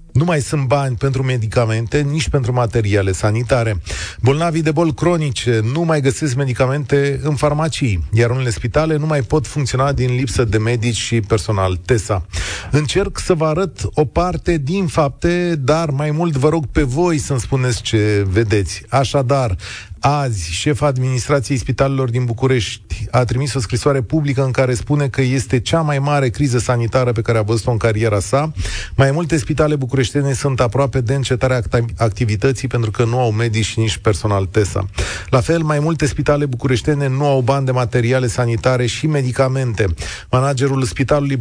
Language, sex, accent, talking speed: Romanian, male, native, 170 wpm